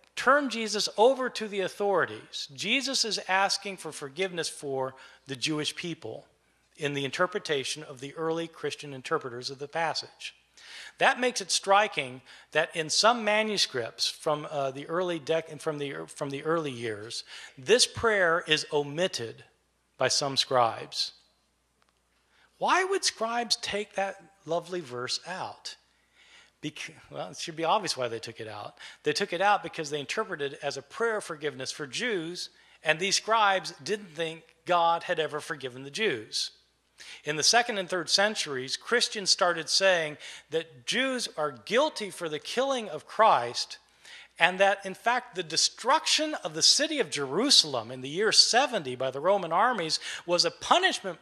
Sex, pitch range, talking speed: male, 150-205 Hz, 150 wpm